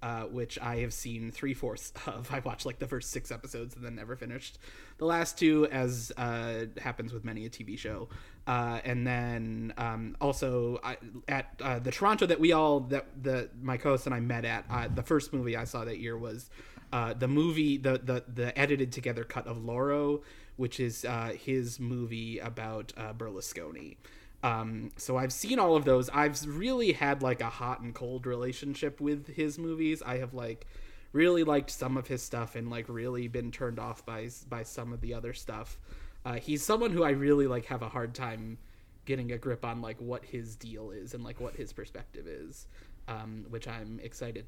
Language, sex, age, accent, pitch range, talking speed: English, male, 30-49, American, 115-130 Hz, 200 wpm